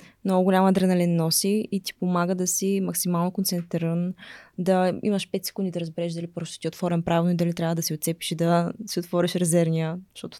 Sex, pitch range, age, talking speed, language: female, 170-200 Hz, 20-39, 200 wpm, Bulgarian